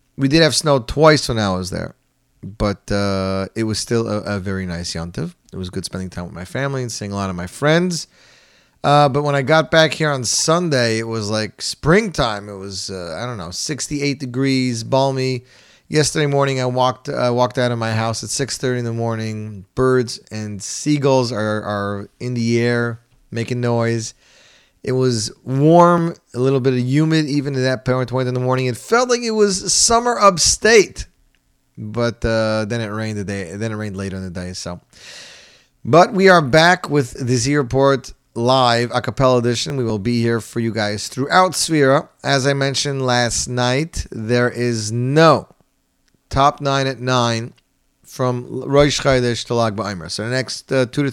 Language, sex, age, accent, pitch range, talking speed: English, male, 30-49, American, 110-140 Hz, 190 wpm